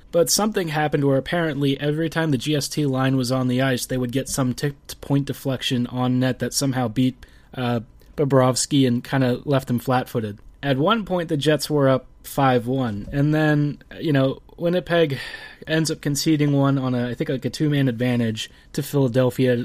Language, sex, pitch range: English, male, 125-150 Hz